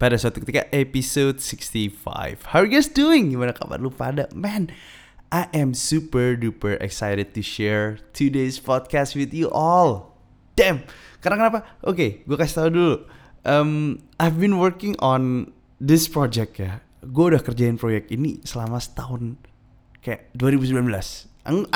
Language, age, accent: Indonesian, 20-39, native